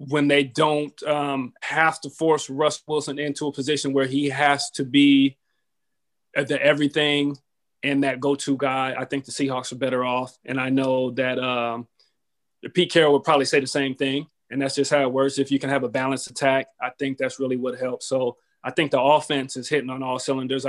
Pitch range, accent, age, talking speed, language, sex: 135-150 Hz, American, 30-49, 215 wpm, English, male